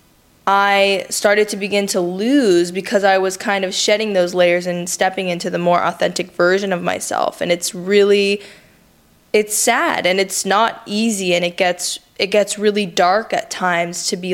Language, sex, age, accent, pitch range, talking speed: English, female, 20-39, American, 175-200 Hz, 180 wpm